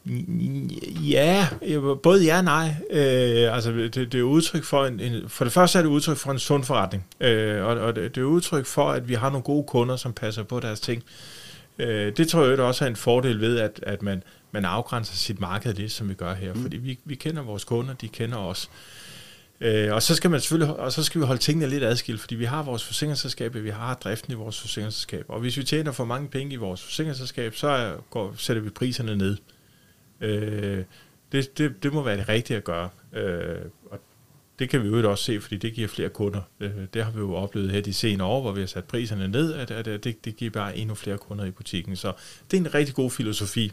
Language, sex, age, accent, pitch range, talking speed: Danish, male, 30-49, native, 105-135 Hz, 230 wpm